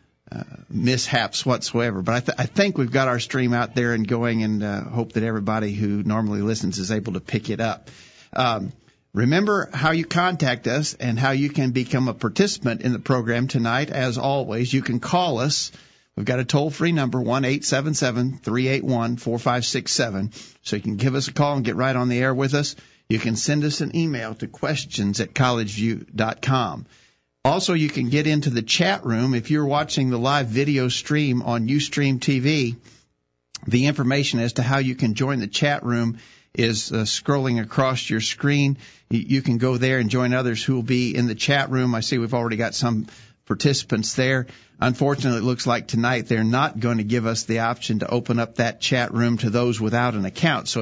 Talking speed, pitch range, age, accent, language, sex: 195 wpm, 115-140 Hz, 50-69, American, English, male